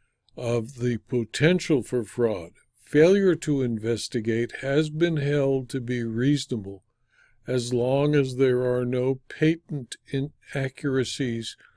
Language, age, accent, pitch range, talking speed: English, 60-79, American, 120-155 Hz, 110 wpm